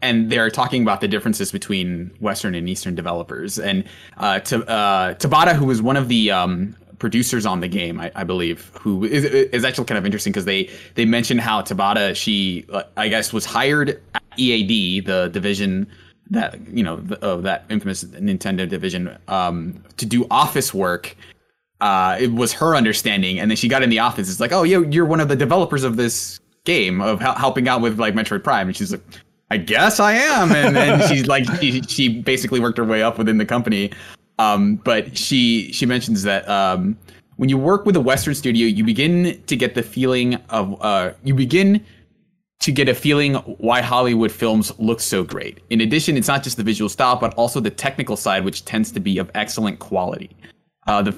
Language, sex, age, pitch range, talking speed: English, male, 20-39, 105-140 Hz, 200 wpm